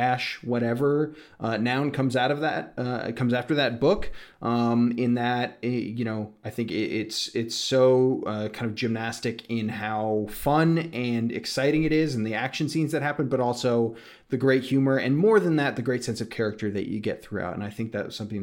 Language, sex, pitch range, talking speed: English, male, 110-135 Hz, 210 wpm